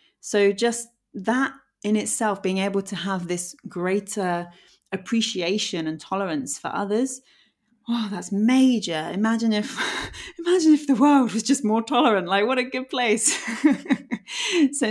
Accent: British